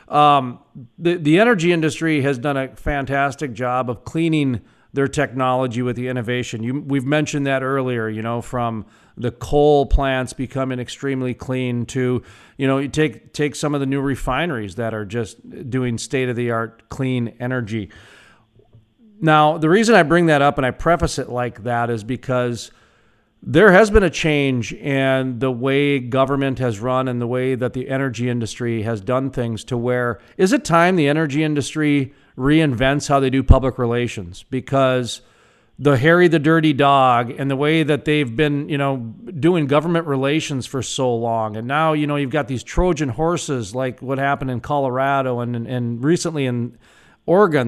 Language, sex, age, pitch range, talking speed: English, male, 40-59, 120-150 Hz, 175 wpm